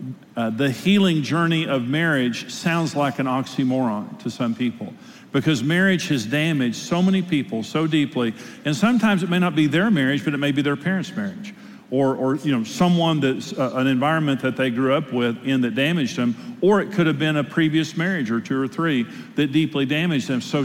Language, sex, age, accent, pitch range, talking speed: English, male, 50-69, American, 130-175 Hz, 210 wpm